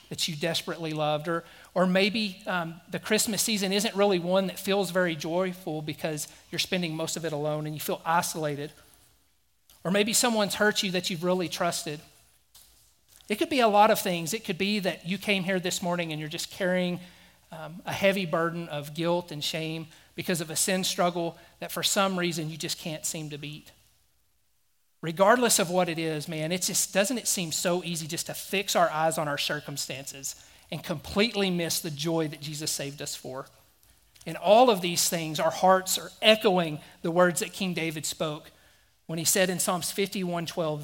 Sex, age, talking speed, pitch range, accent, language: male, 40-59, 200 wpm, 155-190 Hz, American, English